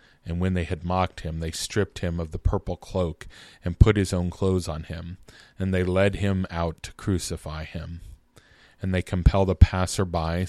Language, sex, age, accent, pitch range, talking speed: English, male, 40-59, American, 85-95 Hz, 190 wpm